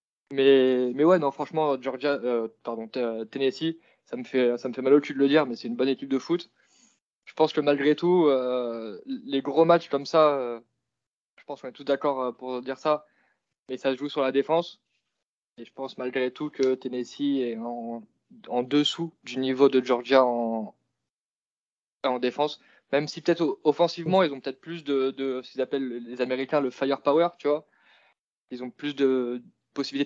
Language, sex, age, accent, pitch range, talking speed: French, male, 20-39, French, 130-150 Hz, 200 wpm